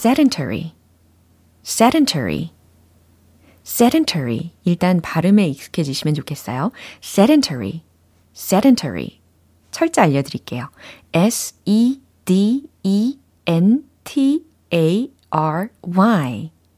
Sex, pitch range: female, 140-230 Hz